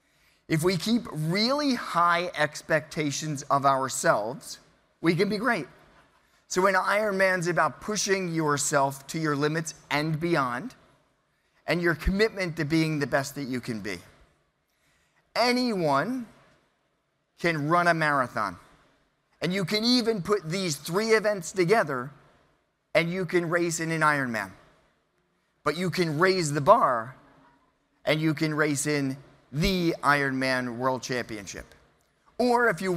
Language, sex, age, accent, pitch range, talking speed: English, male, 30-49, American, 140-185 Hz, 135 wpm